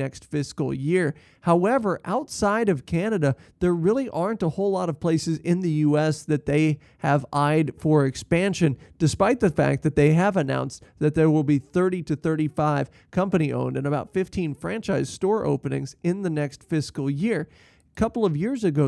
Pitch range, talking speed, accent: 145-170 Hz, 180 wpm, American